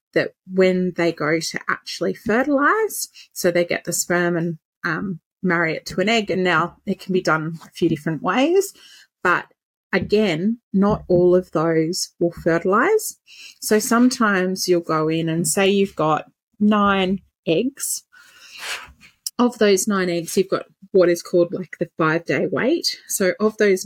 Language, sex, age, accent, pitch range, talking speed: English, female, 30-49, Australian, 165-210 Hz, 160 wpm